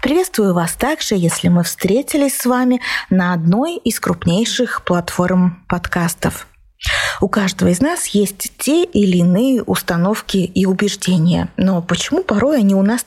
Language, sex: Russian, female